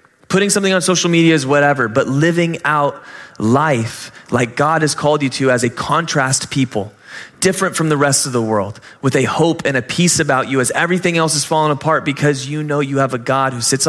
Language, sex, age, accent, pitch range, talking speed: English, male, 20-39, American, 125-165 Hz, 220 wpm